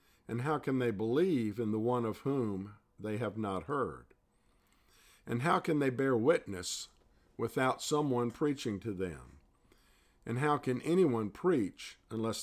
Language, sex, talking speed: English, male, 150 wpm